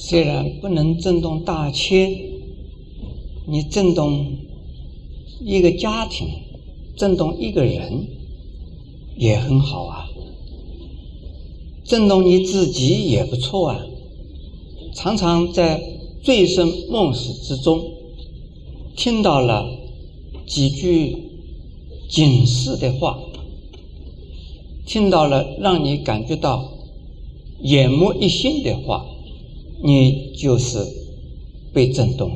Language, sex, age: Chinese, male, 50-69